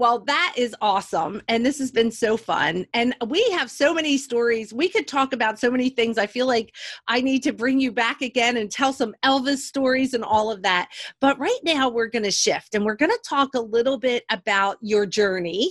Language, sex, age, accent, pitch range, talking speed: English, female, 40-59, American, 225-275 Hz, 230 wpm